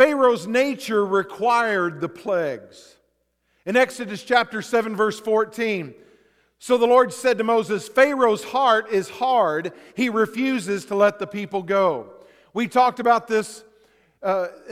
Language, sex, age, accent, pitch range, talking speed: English, male, 50-69, American, 160-235 Hz, 135 wpm